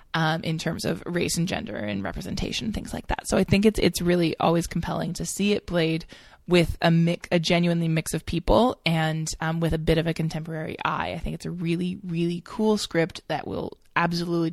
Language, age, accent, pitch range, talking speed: English, 20-39, American, 160-180 Hz, 215 wpm